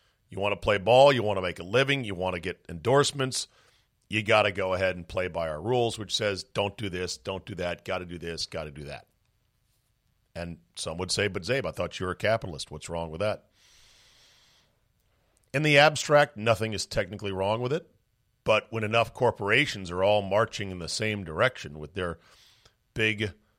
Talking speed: 205 wpm